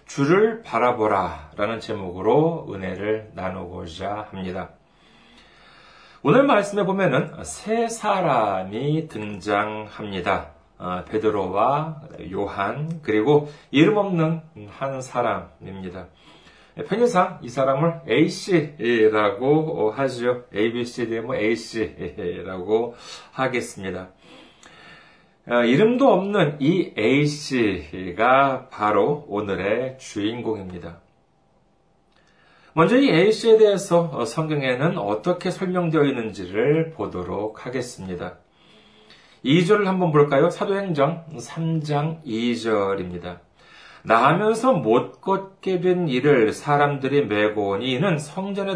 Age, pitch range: 40-59, 105-170 Hz